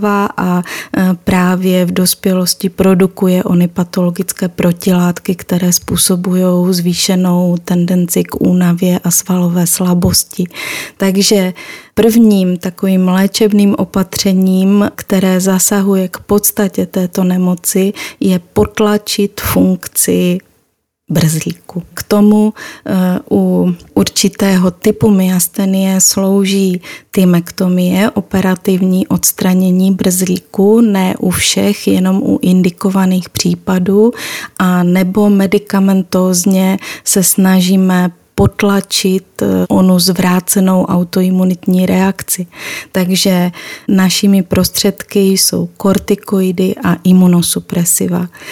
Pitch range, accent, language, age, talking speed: 180-195 Hz, native, Czech, 30-49, 85 wpm